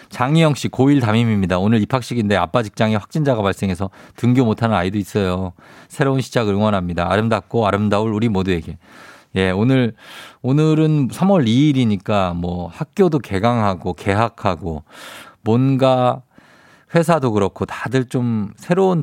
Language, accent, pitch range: Korean, native, 100-150 Hz